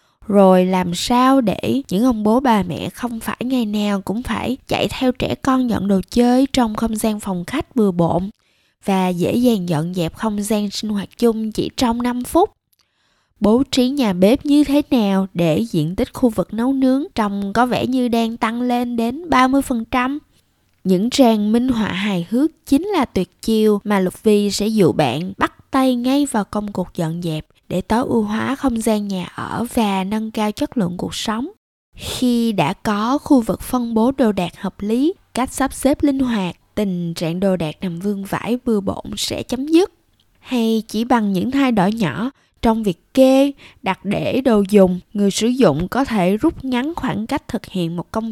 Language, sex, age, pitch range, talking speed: Vietnamese, female, 20-39, 195-255 Hz, 200 wpm